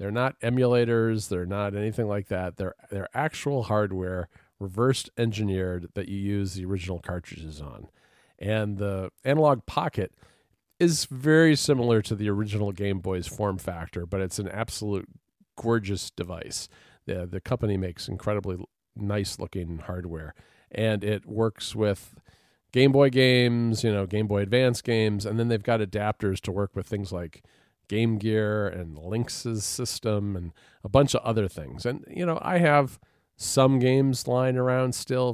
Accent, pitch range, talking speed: American, 95-120 Hz, 155 wpm